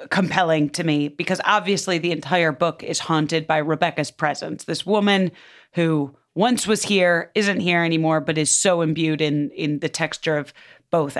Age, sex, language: 30-49, female, English